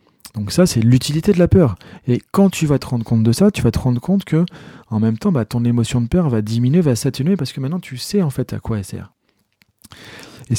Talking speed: 260 wpm